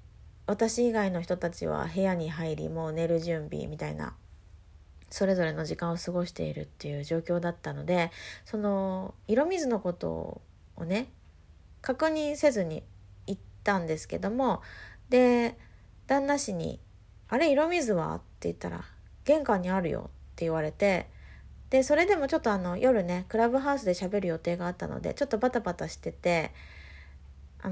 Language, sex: Japanese, female